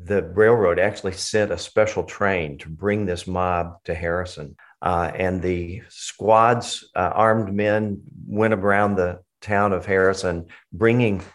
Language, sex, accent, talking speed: English, male, American, 145 wpm